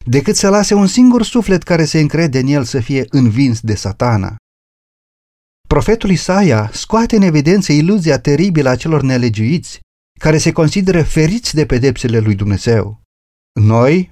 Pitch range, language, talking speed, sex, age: 115-175 Hz, Romanian, 150 wpm, male, 30-49